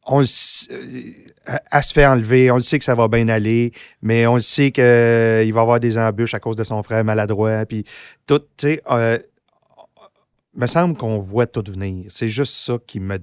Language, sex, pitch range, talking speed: French, male, 110-130 Hz, 215 wpm